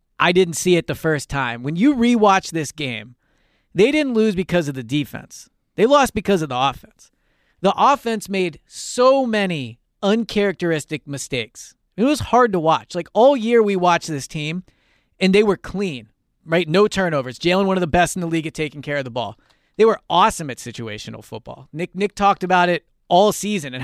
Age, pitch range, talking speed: 30-49, 145-200 Hz, 200 wpm